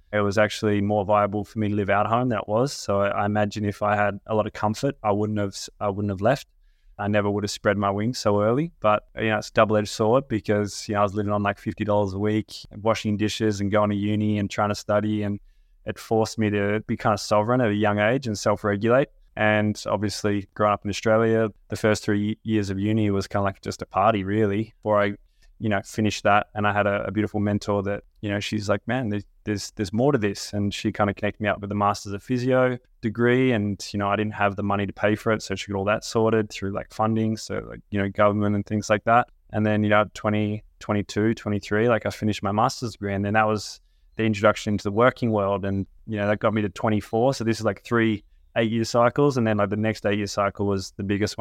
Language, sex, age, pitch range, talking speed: English, male, 20-39, 100-110 Hz, 260 wpm